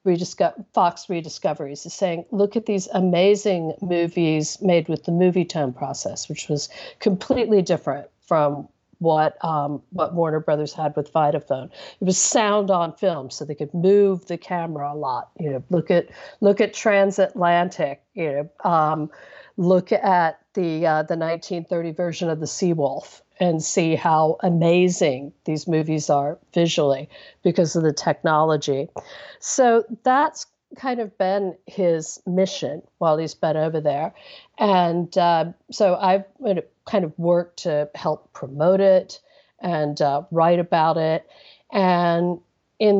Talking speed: 150 wpm